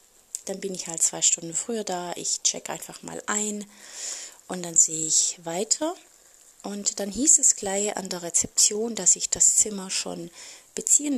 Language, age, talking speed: German, 30-49, 170 wpm